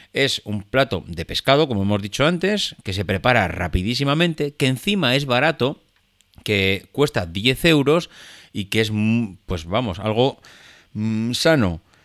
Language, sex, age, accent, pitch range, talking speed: Spanish, male, 30-49, Spanish, 100-145 Hz, 140 wpm